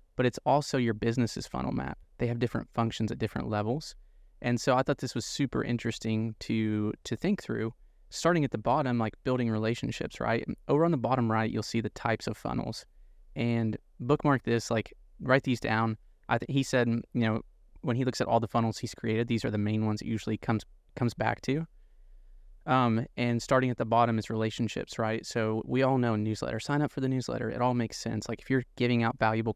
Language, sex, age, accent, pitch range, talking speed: English, male, 20-39, American, 110-125 Hz, 215 wpm